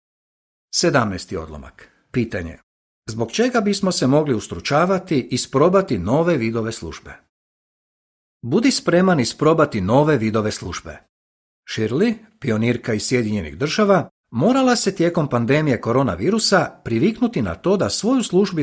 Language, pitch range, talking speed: Croatian, 105-170 Hz, 115 wpm